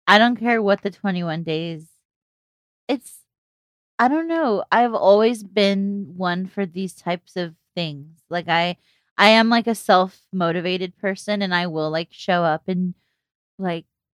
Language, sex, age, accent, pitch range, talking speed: English, female, 20-39, American, 165-200 Hz, 150 wpm